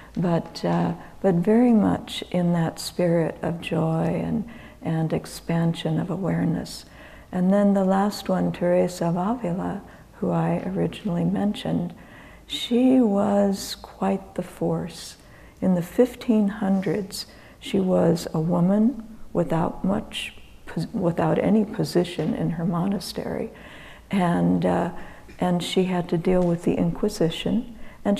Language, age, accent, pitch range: English, 60-79, American, 170-210 Hz